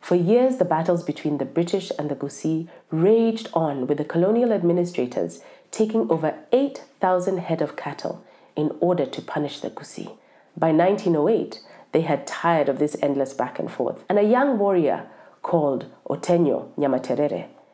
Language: English